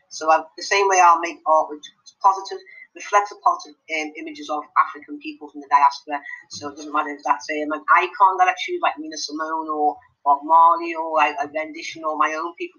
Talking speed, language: 225 wpm, English